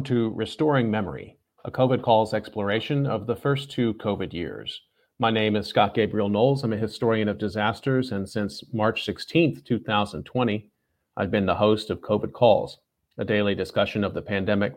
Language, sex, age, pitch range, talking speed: English, male, 40-59, 100-115 Hz, 170 wpm